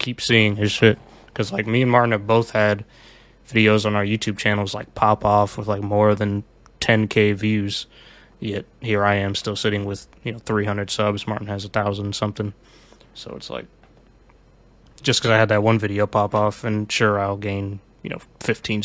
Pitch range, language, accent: 105-115 Hz, English, American